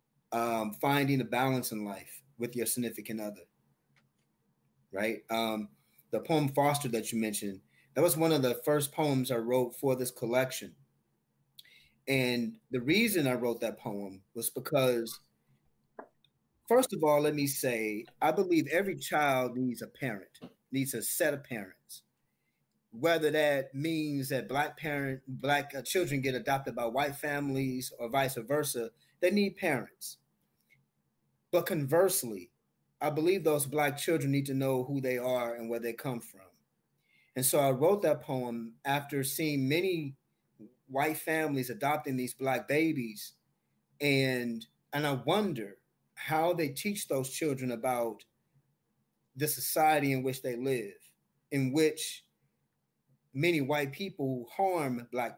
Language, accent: English, American